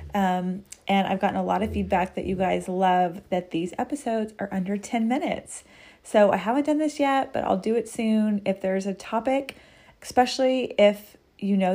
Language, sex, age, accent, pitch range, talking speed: English, female, 30-49, American, 185-245 Hz, 195 wpm